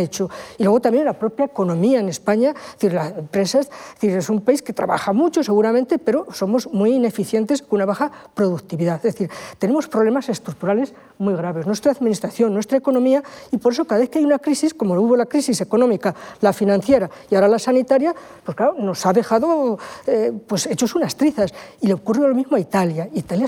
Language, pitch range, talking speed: Spanish, 200-270 Hz, 200 wpm